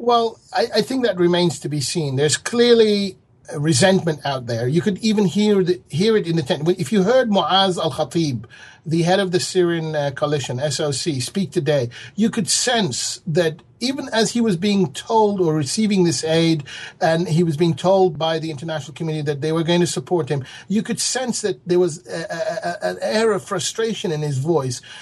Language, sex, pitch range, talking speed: English, male, 160-215 Hz, 205 wpm